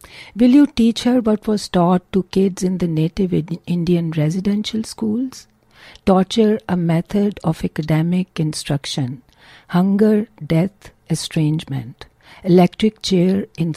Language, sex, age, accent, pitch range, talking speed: English, female, 60-79, Indian, 160-205 Hz, 120 wpm